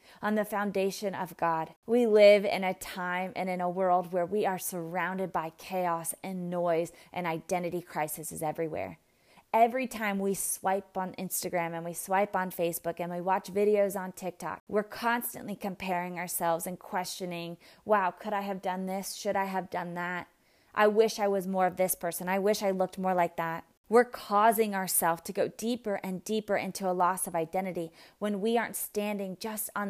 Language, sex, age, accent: English, female, 20-39, American